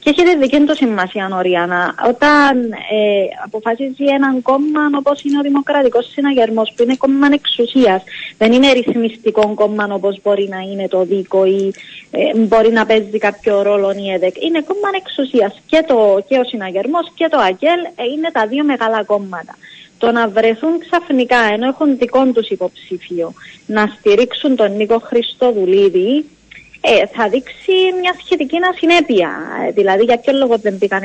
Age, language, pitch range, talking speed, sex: 20-39, Greek, 205-285 Hz, 145 wpm, female